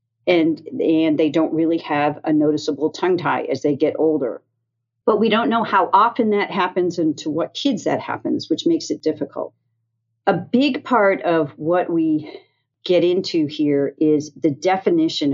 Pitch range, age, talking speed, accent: 150-220 Hz, 40-59, 170 wpm, American